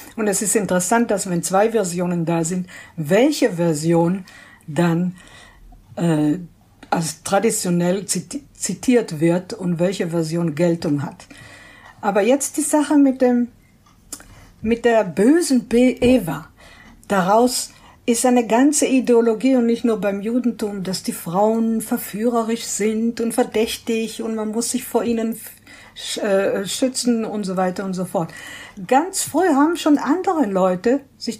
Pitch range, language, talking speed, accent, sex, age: 195-250 Hz, German, 135 wpm, German, female, 60-79